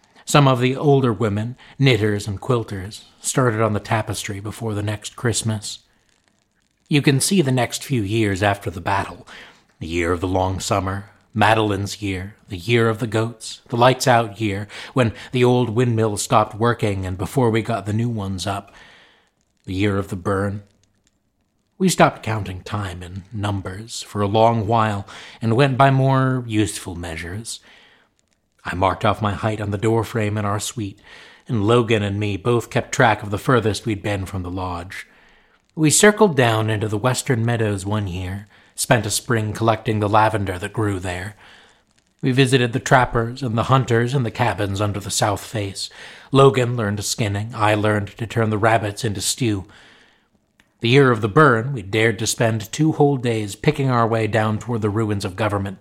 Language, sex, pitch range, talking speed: English, male, 100-120 Hz, 180 wpm